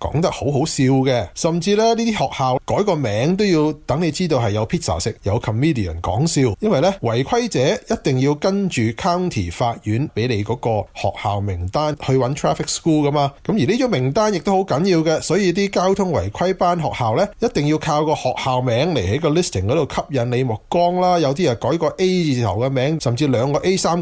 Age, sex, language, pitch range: 20-39, male, Chinese, 115-170 Hz